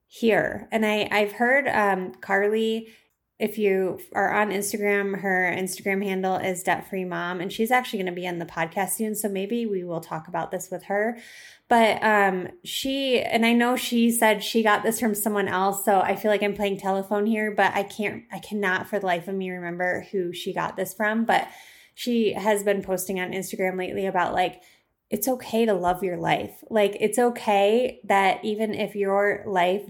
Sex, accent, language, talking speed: female, American, English, 195 wpm